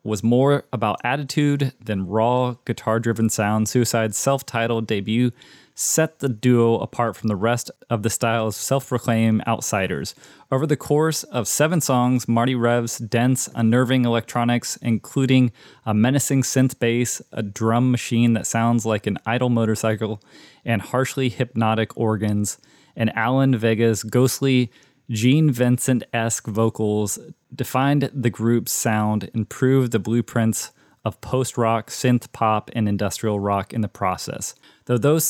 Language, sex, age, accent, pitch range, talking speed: English, male, 20-39, American, 110-130 Hz, 135 wpm